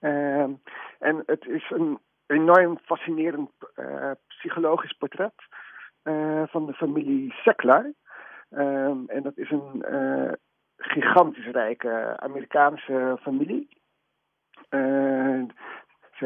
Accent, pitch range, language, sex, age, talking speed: Dutch, 130-165 Hz, Dutch, male, 50-69, 100 wpm